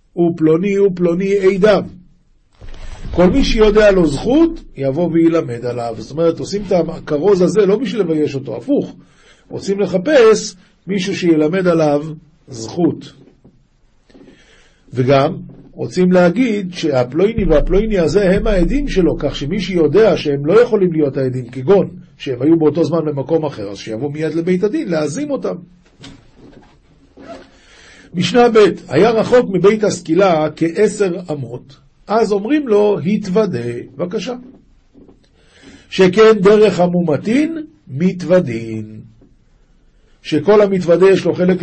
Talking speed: 120 wpm